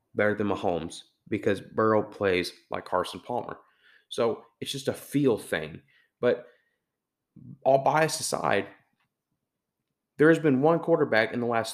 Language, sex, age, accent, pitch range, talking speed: English, male, 30-49, American, 130-200 Hz, 140 wpm